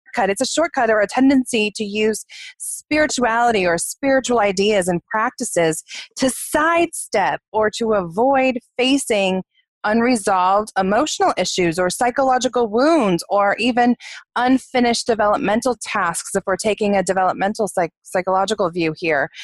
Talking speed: 120 wpm